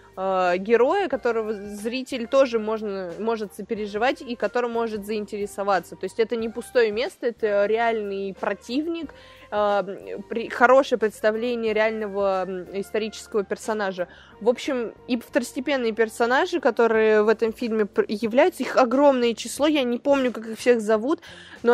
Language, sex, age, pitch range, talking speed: Russian, female, 20-39, 205-245 Hz, 125 wpm